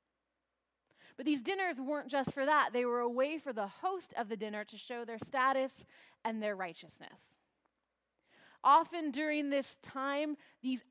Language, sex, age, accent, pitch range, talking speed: English, female, 20-39, American, 220-290 Hz, 160 wpm